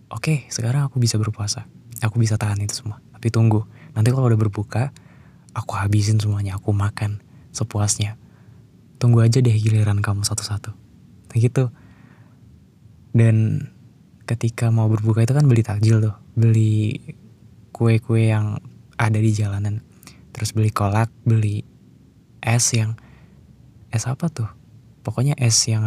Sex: male